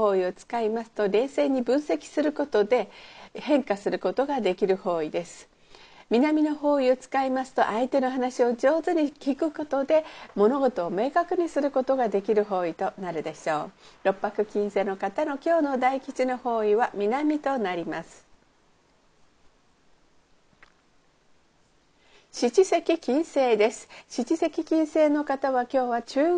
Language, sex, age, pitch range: Japanese, female, 50-69, 205-270 Hz